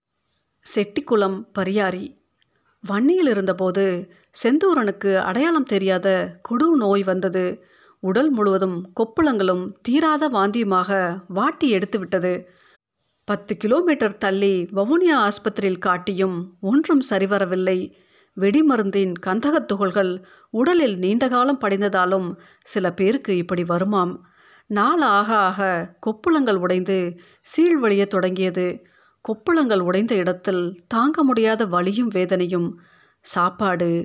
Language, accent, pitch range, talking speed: Tamil, native, 185-225 Hz, 85 wpm